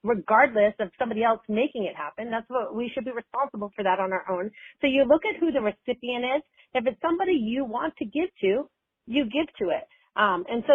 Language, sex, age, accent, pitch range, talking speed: English, female, 40-59, American, 200-265 Hz, 230 wpm